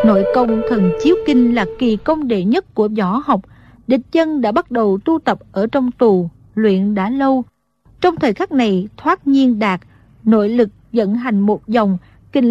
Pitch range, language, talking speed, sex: 205-270 Hz, Vietnamese, 190 wpm, female